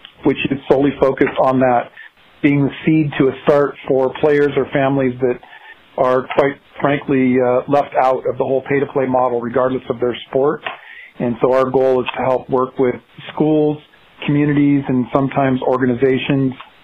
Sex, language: male, English